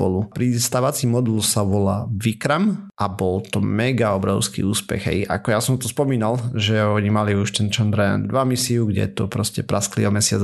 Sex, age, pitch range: male, 30-49, 105-120 Hz